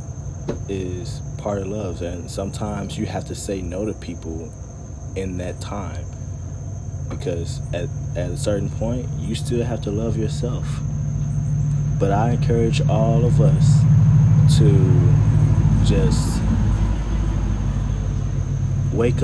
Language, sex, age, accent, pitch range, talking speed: English, male, 30-49, American, 90-120 Hz, 115 wpm